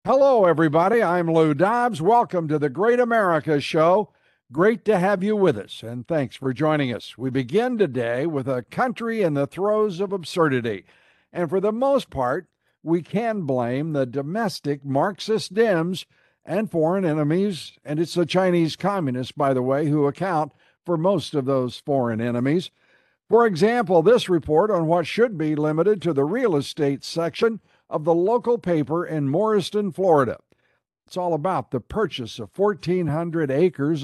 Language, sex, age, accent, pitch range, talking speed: English, male, 60-79, American, 145-200 Hz, 165 wpm